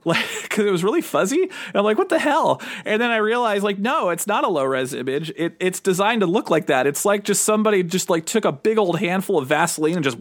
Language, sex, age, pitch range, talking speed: English, male, 30-49, 140-195 Hz, 265 wpm